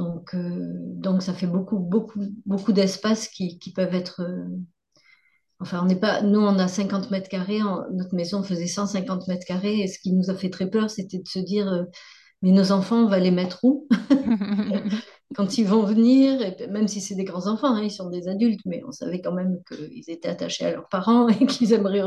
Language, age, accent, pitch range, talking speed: French, 40-59, French, 180-215 Hz, 225 wpm